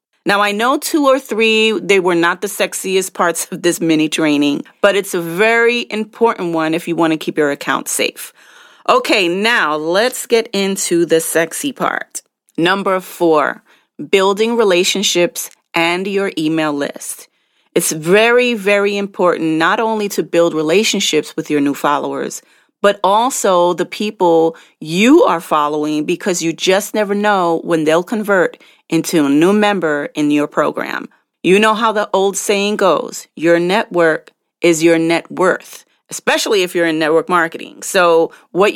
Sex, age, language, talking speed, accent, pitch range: female, 40-59, English, 160 wpm, American, 165-210 Hz